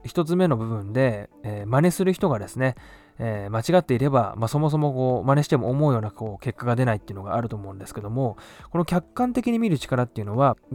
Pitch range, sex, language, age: 110-155 Hz, male, Japanese, 20-39